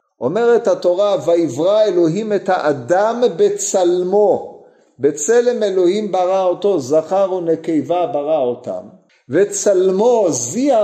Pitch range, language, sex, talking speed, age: 165-230 Hz, Hebrew, male, 95 wpm, 50-69